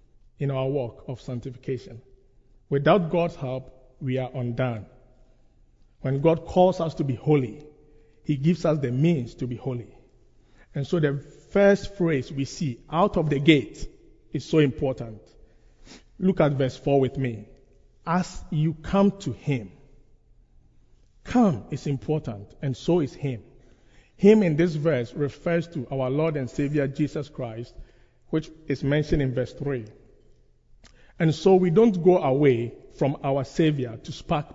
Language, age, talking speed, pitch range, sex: English, 50-69, 150 wpm, 130-165 Hz, male